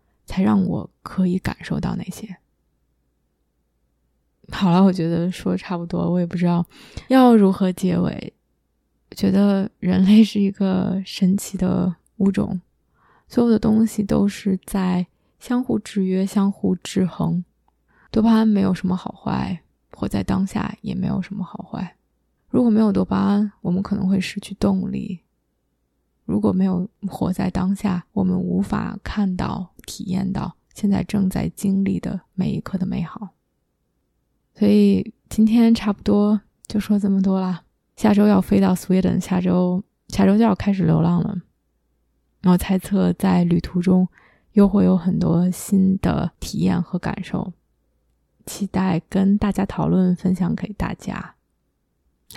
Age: 20-39